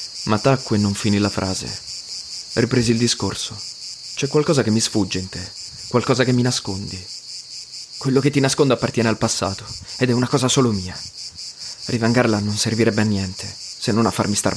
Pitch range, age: 95-125 Hz, 30-49